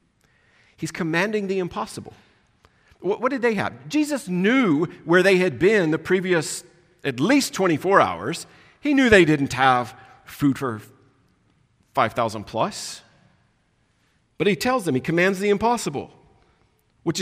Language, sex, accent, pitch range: English, male, American, 145-230 Hz